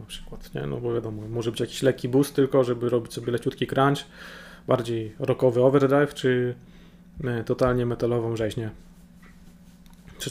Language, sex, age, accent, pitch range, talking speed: Polish, male, 20-39, native, 125-145 Hz, 150 wpm